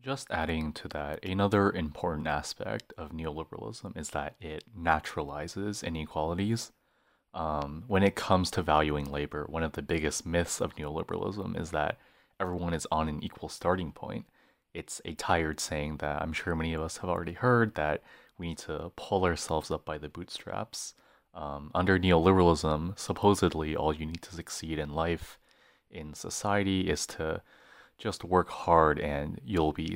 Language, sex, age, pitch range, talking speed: English, male, 30-49, 75-95 Hz, 160 wpm